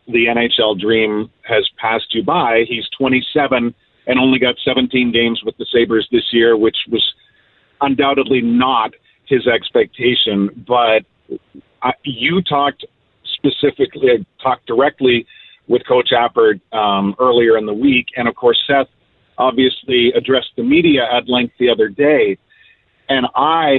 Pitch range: 120-155 Hz